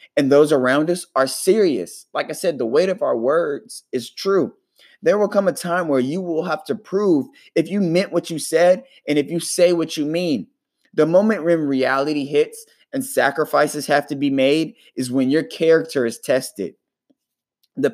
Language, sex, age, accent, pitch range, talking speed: English, male, 20-39, American, 145-195 Hz, 195 wpm